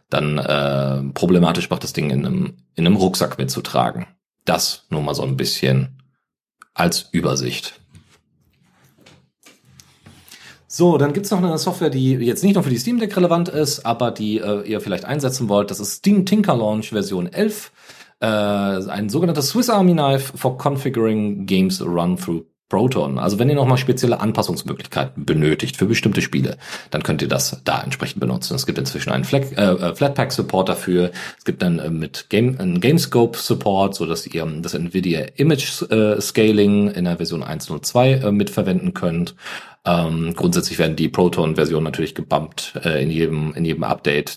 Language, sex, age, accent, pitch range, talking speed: German, male, 40-59, German, 85-135 Hz, 165 wpm